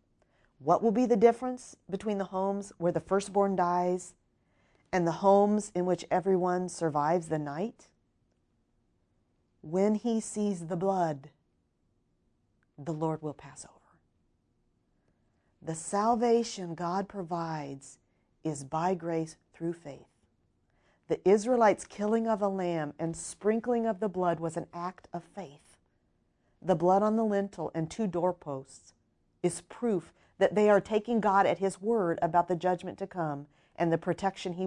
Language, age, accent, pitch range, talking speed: English, 40-59, American, 165-205 Hz, 145 wpm